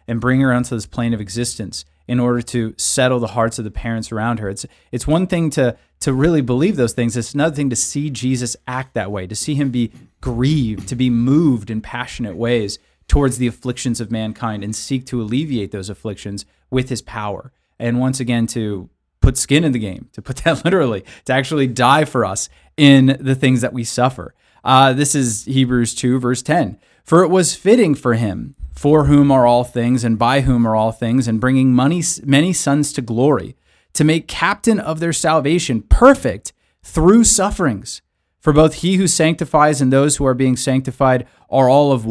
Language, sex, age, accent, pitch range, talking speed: English, male, 30-49, American, 115-140 Hz, 200 wpm